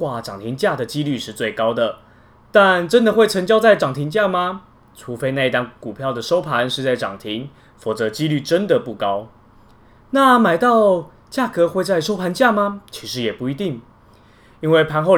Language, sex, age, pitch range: Chinese, male, 20-39, 120-180 Hz